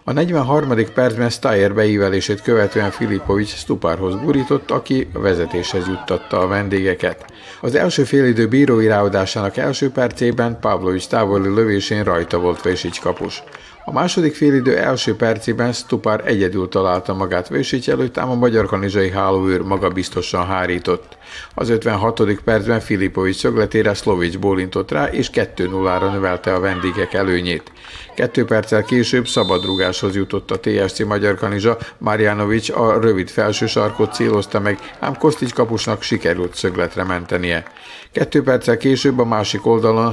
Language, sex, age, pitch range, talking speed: Hungarian, male, 50-69, 95-120 Hz, 135 wpm